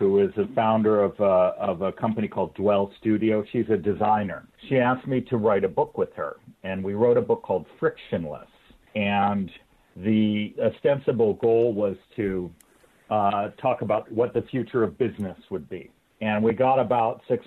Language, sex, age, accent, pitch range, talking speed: English, male, 50-69, American, 105-130 Hz, 180 wpm